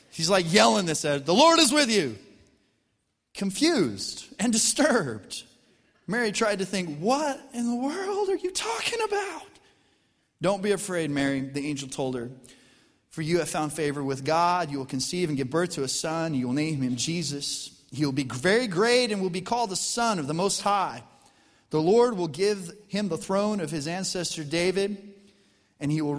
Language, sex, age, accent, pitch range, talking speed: English, male, 30-49, American, 150-215 Hz, 190 wpm